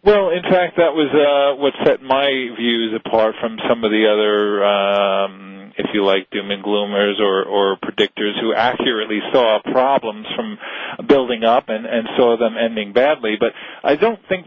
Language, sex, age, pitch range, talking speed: English, male, 40-59, 110-135 Hz, 180 wpm